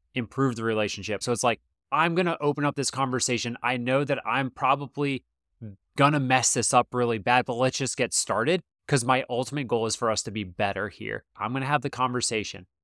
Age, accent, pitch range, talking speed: 20-39, American, 105-135 Hz, 220 wpm